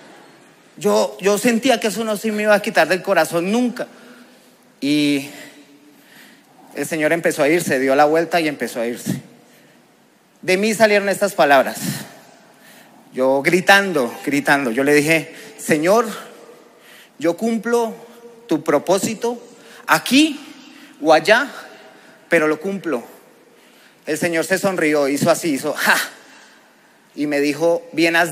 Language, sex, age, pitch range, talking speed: Spanish, male, 30-49, 155-220 Hz, 130 wpm